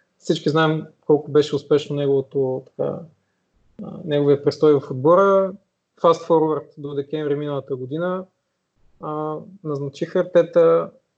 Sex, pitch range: male, 140-165 Hz